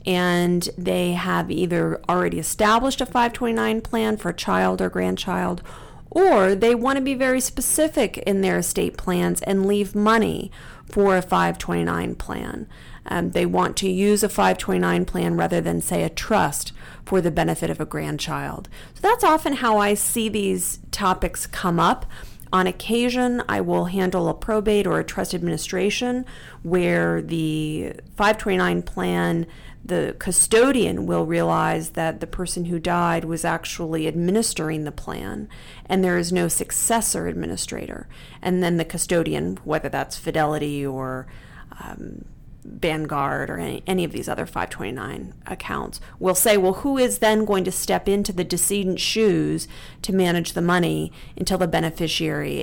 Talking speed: 150 wpm